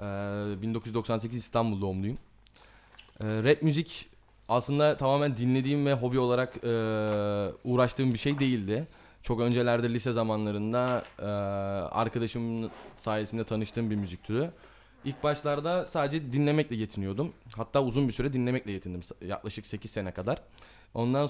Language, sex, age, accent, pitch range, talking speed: Turkish, male, 20-39, native, 110-135 Hz, 115 wpm